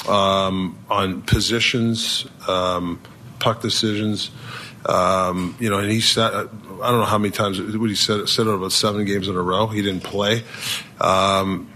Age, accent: 40-59, American